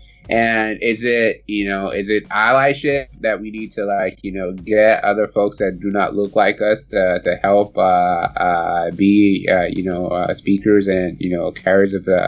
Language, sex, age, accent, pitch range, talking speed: English, male, 20-39, American, 95-110 Hz, 200 wpm